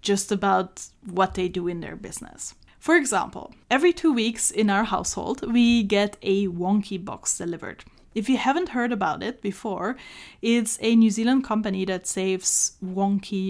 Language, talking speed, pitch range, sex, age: English, 165 wpm, 190-235 Hz, female, 10-29